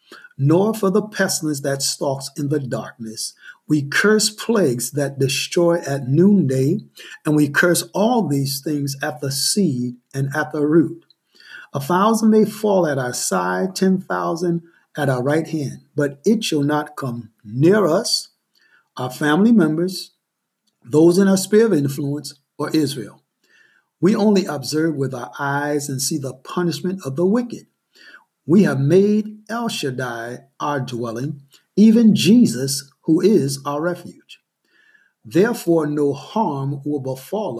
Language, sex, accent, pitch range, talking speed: English, male, American, 140-190 Hz, 145 wpm